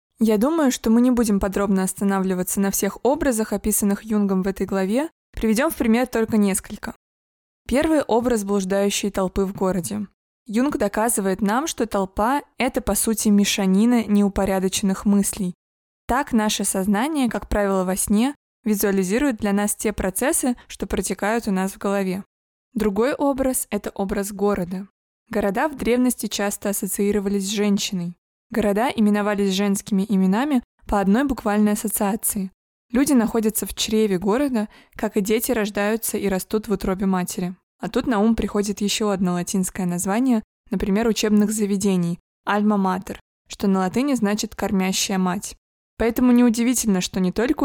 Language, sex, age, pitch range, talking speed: Russian, female, 20-39, 195-230 Hz, 145 wpm